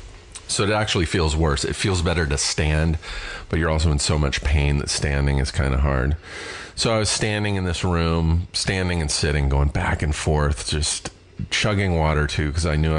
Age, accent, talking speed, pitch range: 40-59, American, 205 wpm, 75-95 Hz